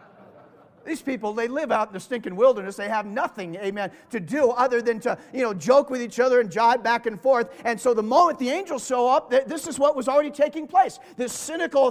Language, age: English, 40-59